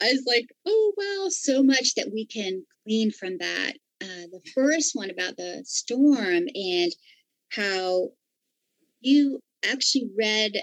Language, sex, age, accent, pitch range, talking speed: English, female, 40-59, American, 200-280 Hz, 140 wpm